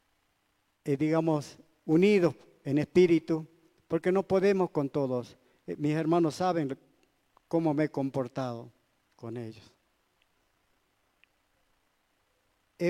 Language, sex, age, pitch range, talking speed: Spanish, male, 50-69, 140-190 Hz, 90 wpm